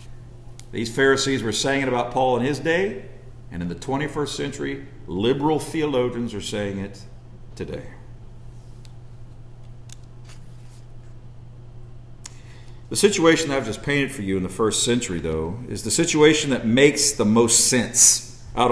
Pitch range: 120-145 Hz